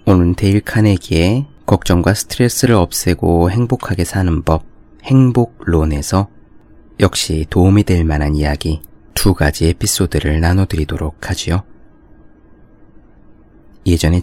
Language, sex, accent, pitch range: Korean, male, native, 80-105 Hz